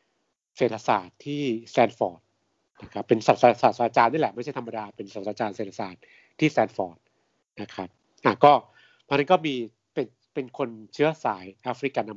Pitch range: 105-135 Hz